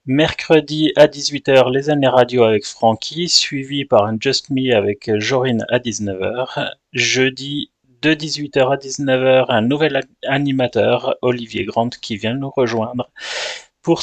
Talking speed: 135 wpm